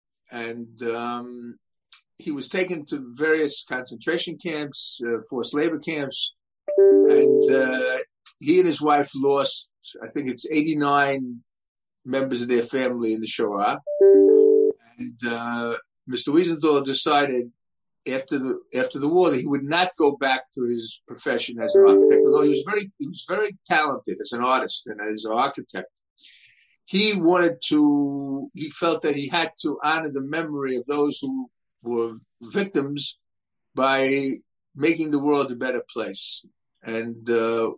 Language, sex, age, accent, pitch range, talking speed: English, male, 50-69, American, 130-180 Hz, 150 wpm